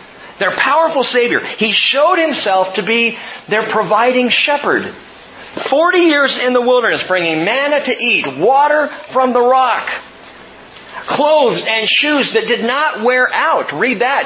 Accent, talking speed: American, 145 wpm